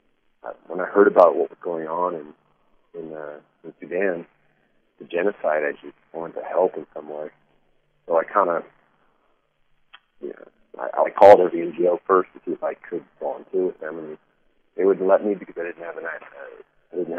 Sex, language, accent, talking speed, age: male, English, American, 205 wpm, 40-59